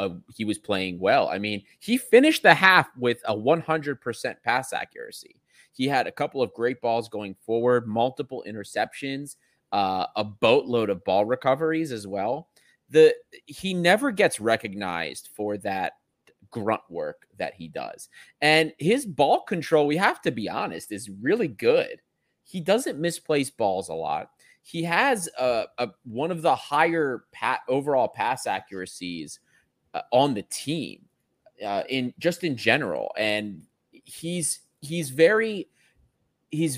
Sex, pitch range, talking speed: male, 105-160 Hz, 145 wpm